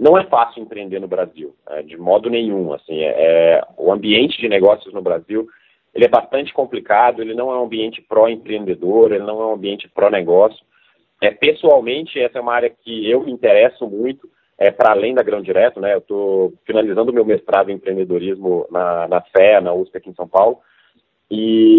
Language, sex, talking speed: Portuguese, male, 185 wpm